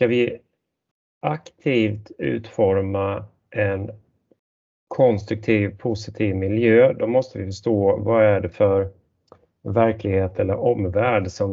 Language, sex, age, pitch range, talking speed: Swedish, male, 30-49, 95-110 Hz, 105 wpm